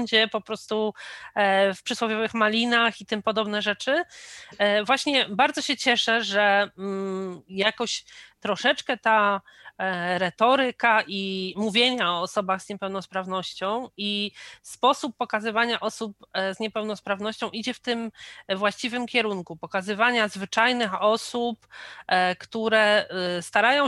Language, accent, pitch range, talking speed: Polish, native, 210-245 Hz, 100 wpm